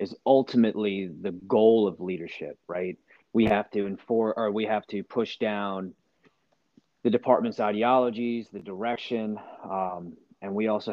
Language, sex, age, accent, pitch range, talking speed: English, male, 30-49, American, 95-110 Hz, 145 wpm